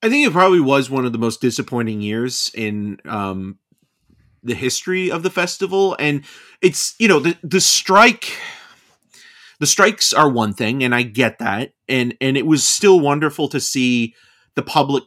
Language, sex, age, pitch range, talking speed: English, male, 30-49, 105-130 Hz, 175 wpm